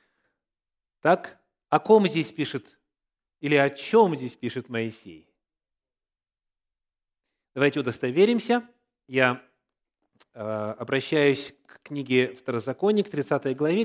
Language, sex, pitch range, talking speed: Russian, male, 130-220 Hz, 90 wpm